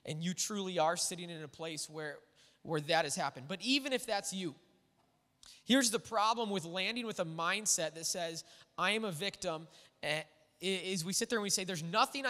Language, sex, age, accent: English, male, 20-39, American